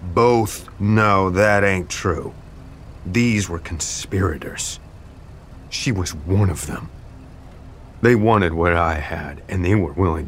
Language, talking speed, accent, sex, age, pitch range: English, 130 wpm, American, male, 30-49, 95-140 Hz